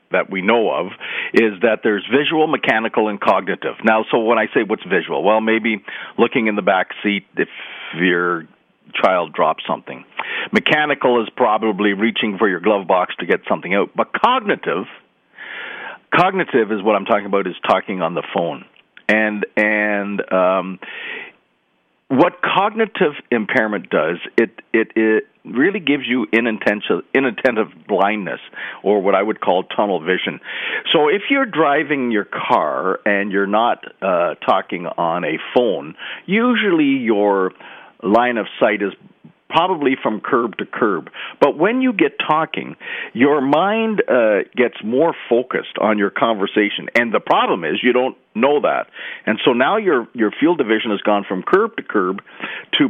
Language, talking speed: English, 160 wpm